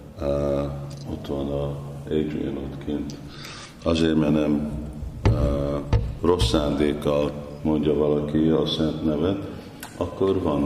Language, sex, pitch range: Hungarian, male, 70-75 Hz